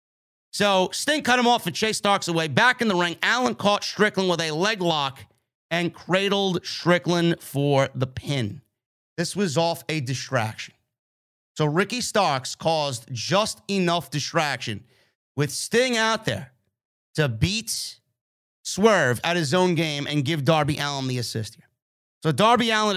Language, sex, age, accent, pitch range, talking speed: English, male, 30-49, American, 130-185 Hz, 155 wpm